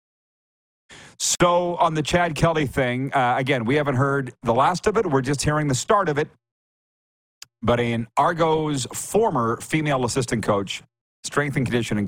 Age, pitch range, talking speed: 50-69, 115-150 Hz, 160 wpm